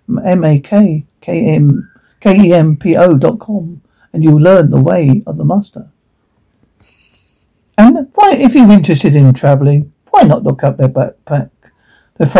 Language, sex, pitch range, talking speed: English, male, 155-235 Hz, 170 wpm